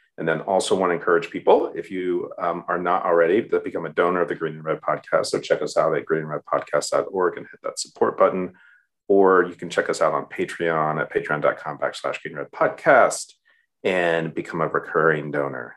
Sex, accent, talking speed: male, American, 205 wpm